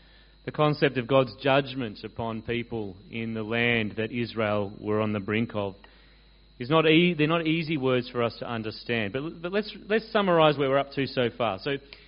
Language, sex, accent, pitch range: English, male, Australian, 120-165 Hz